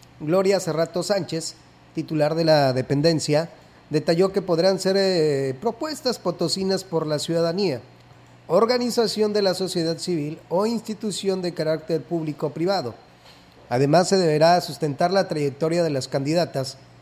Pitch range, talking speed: 145-185 Hz, 125 wpm